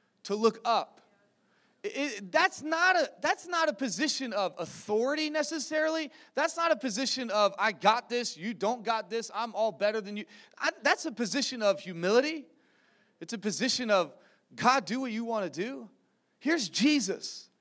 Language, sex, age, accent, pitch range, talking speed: English, male, 30-49, American, 205-270 Hz, 155 wpm